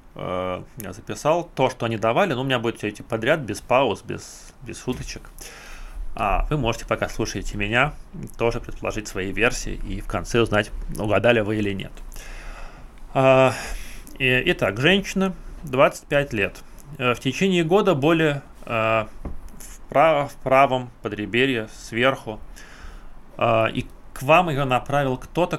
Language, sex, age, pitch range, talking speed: English, male, 20-39, 110-140 Hz, 130 wpm